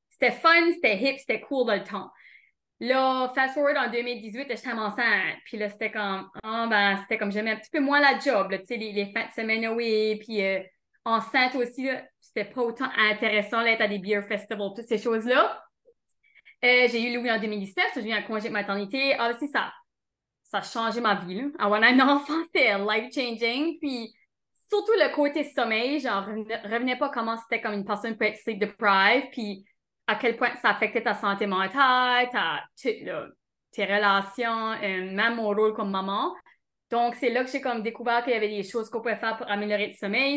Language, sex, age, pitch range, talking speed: English, female, 20-39, 210-255 Hz, 205 wpm